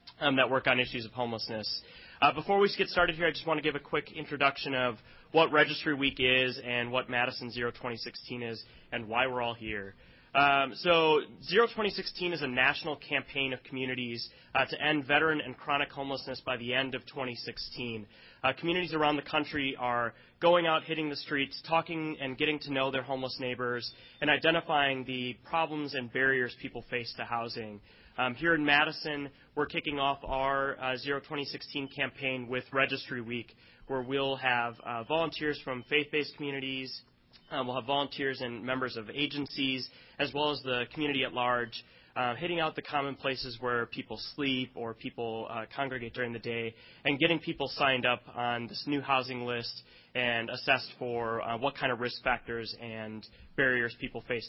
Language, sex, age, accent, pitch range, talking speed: English, male, 30-49, American, 120-145 Hz, 180 wpm